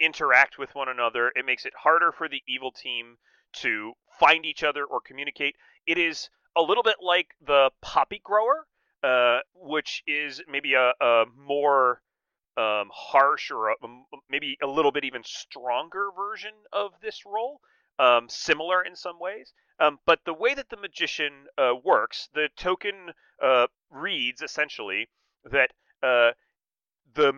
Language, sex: English, male